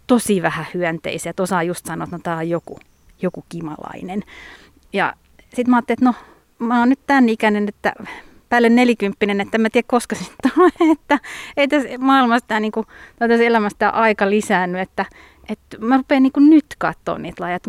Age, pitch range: 30-49, 195-245 Hz